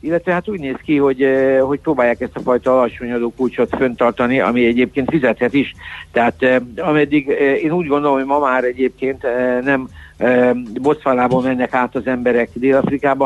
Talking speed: 155 wpm